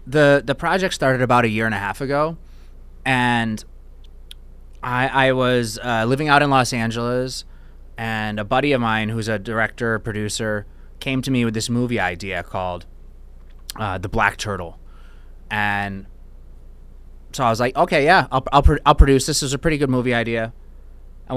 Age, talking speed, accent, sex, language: 20-39, 170 wpm, American, male, English